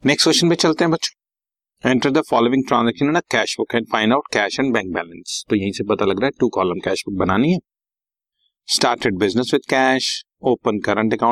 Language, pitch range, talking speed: Hindi, 105-130 Hz, 80 wpm